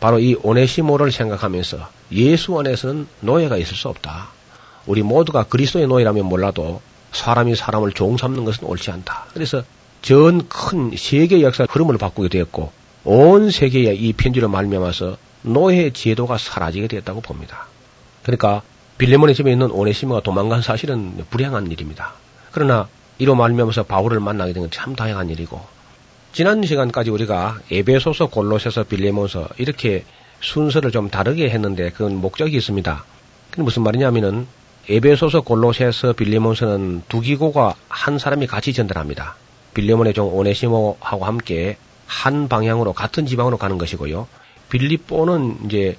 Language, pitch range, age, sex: Korean, 100-130 Hz, 40-59, male